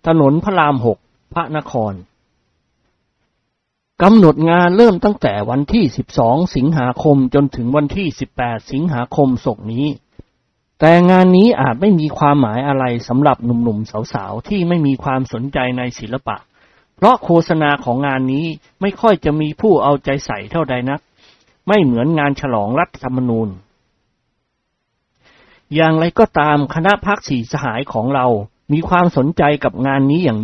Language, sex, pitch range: Thai, male, 125-160 Hz